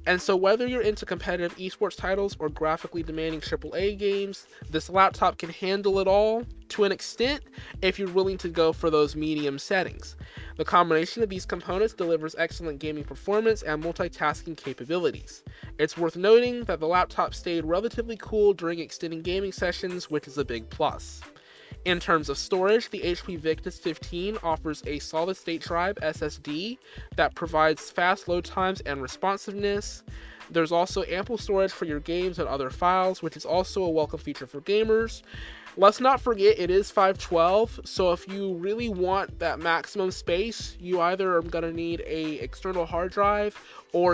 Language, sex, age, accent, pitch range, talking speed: English, male, 20-39, American, 160-200 Hz, 170 wpm